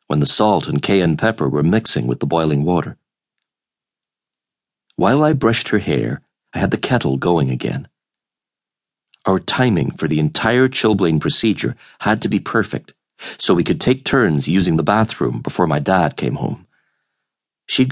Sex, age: male, 40-59